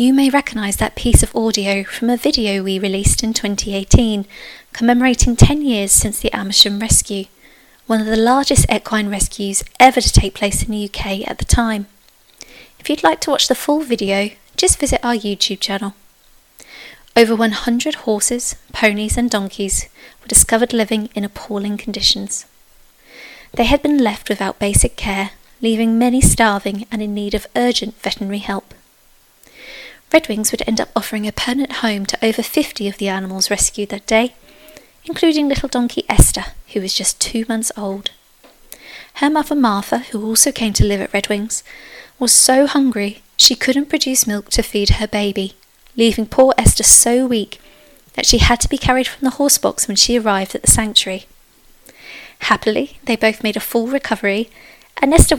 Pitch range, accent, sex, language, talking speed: 205-245 Hz, British, female, English, 170 wpm